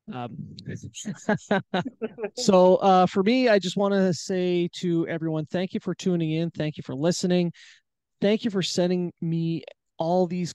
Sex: male